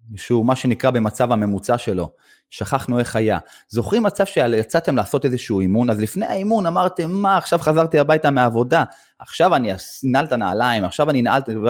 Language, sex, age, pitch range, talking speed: Hebrew, male, 30-49, 115-165 Hz, 165 wpm